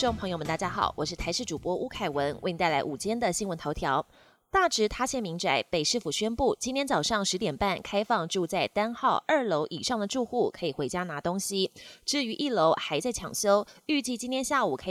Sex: female